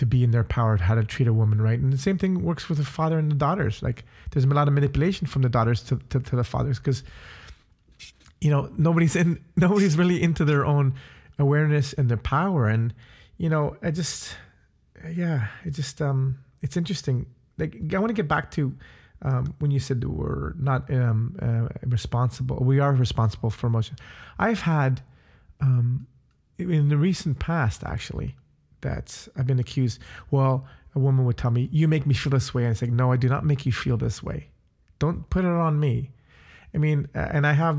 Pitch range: 120-150 Hz